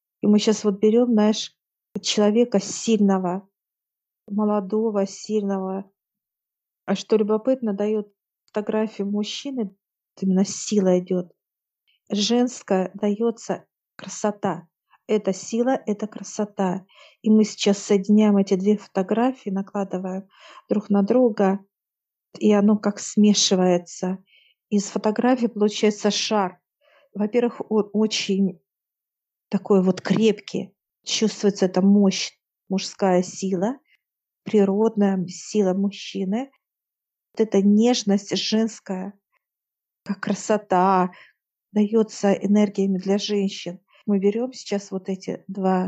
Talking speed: 100 wpm